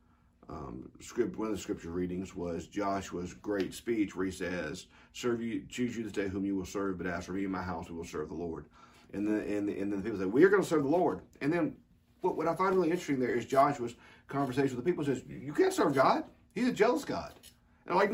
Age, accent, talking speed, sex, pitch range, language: 50-69, American, 260 wpm, male, 95-155 Hz, English